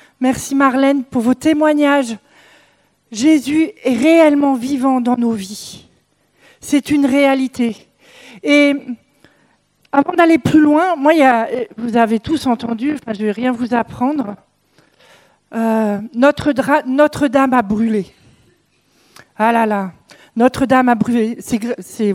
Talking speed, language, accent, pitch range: 135 wpm, French, French, 240-310 Hz